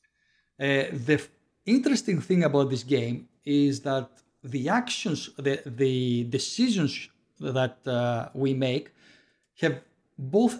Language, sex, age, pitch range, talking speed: English, male, 50-69, 140-175 Hz, 120 wpm